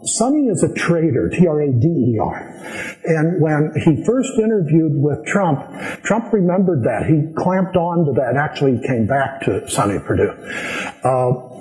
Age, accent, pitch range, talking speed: 60-79, American, 140-190 Hz, 145 wpm